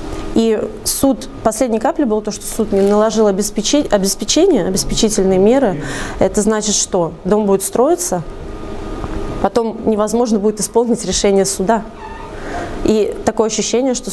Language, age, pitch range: Russian, 20-39, 185-220 Hz